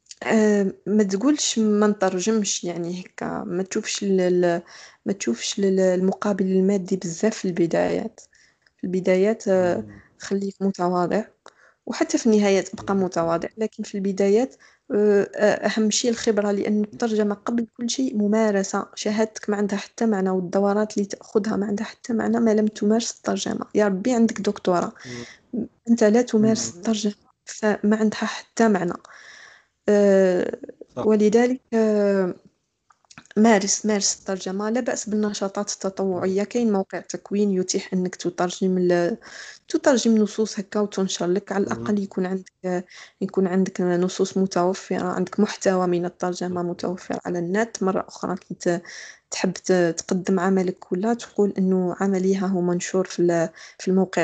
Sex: female